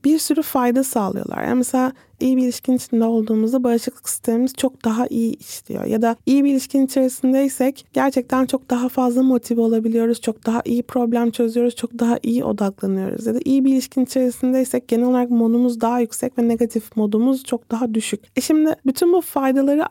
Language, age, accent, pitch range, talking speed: Turkish, 30-49, native, 235-265 Hz, 180 wpm